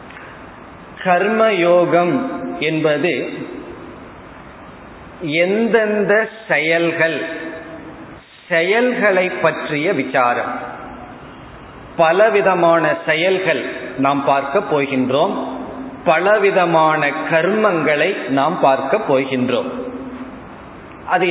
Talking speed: 50 wpm